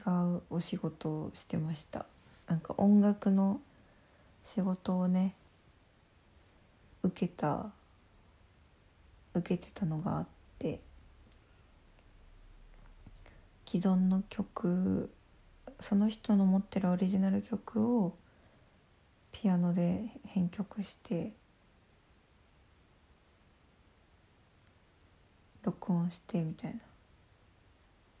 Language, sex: Japanese, female